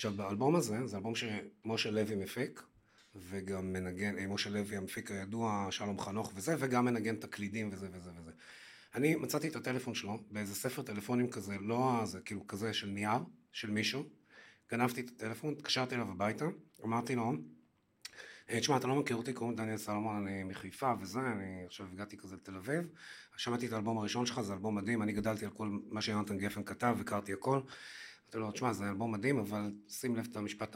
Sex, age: male, 30-49